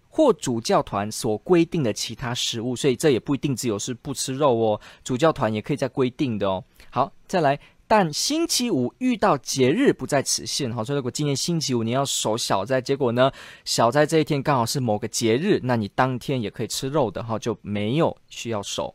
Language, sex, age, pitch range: Chinese, male, 20-39, 115-165 Hz